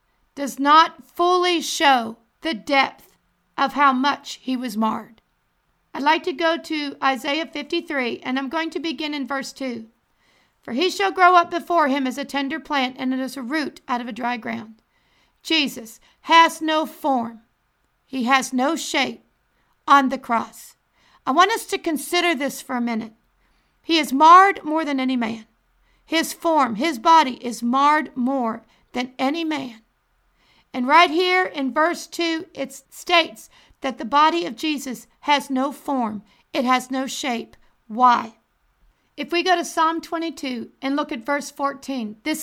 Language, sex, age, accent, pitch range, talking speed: English, female, 50-69, American, 245-315 Hz, 165 wpm